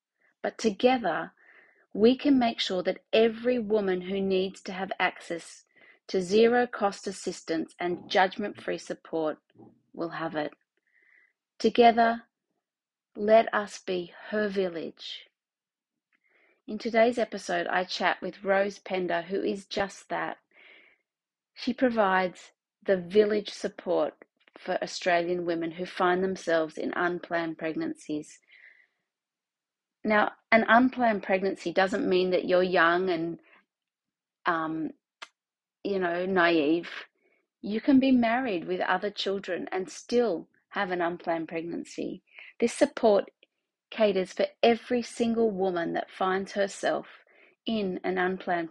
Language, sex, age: English, female, 30-49